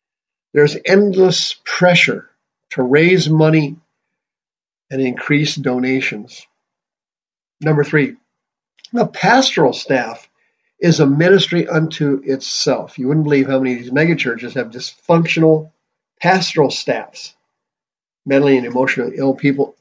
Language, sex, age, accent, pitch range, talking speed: English, male, 50-69, American, 140-175 Hz, 110 wpm